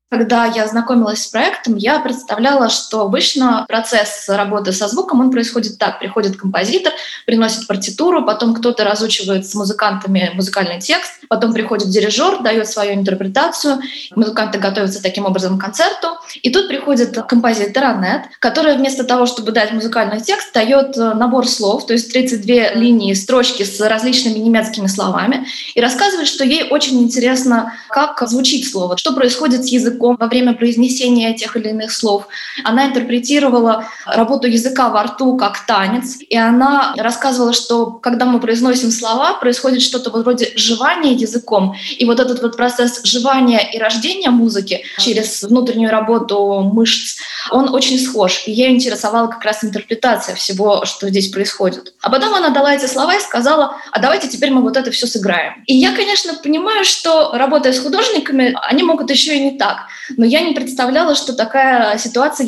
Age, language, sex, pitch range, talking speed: 20-39, Russian, female, 215-265 Hz, 160 wpm